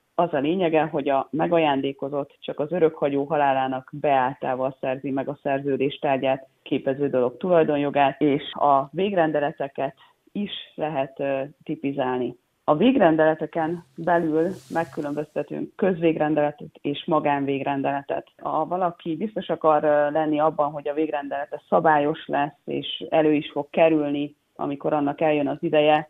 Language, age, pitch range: Hungarian, 30-49, 140-160 Hz